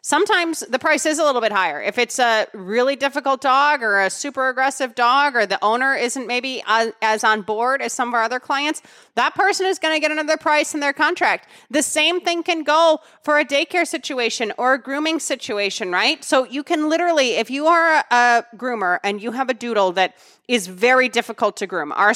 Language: English